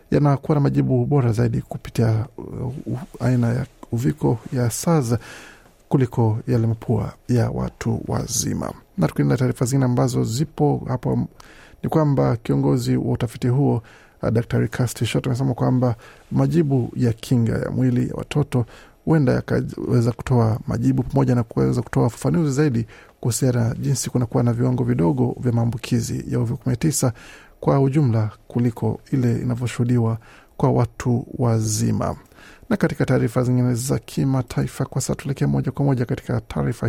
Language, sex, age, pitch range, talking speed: Swahili, male, 50-69, 115-135 Hz, 140 wpm